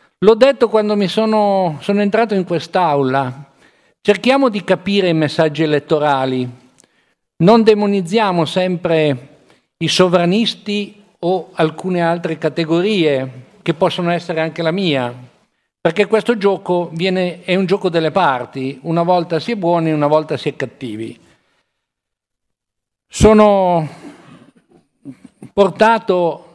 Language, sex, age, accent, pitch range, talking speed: Italian, male, 50-69, native, 155-205 Hz, 115 wpm